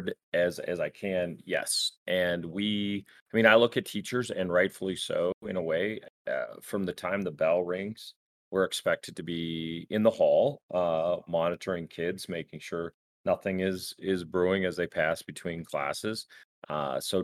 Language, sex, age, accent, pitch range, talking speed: English, male, 30-49, American, 90-110 Hz, 170 wpm